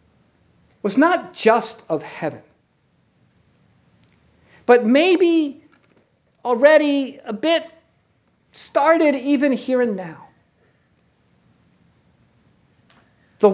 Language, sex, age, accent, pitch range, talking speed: English, male, 50-69, American, 215-275 Hz, 70 wpm